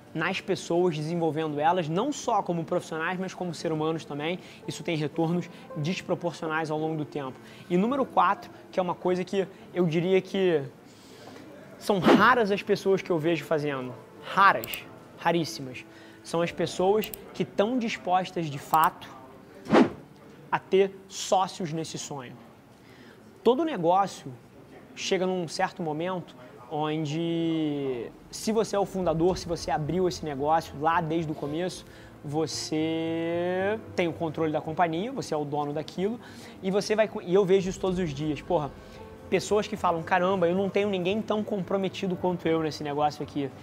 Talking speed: 155 wpm